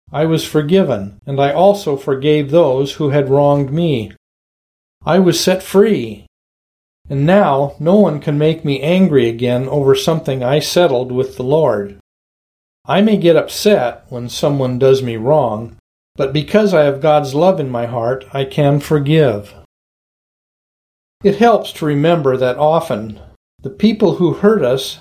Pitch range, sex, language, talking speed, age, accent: 125-170 Hz, male, English, 155 wpm, 50-69, American